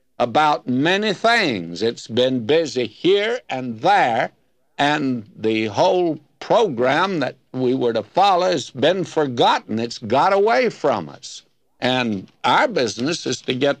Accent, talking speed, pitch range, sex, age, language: American, 140 wpm, 120-180 Hz, male, 60-79, English